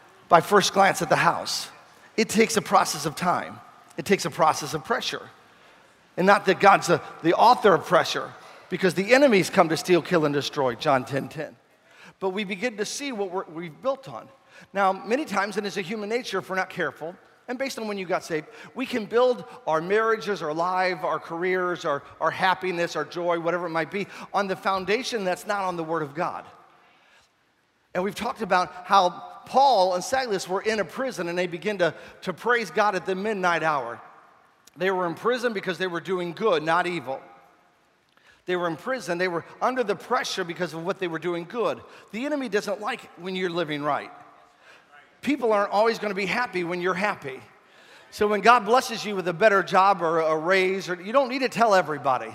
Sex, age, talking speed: male, 40-59, 210 wpm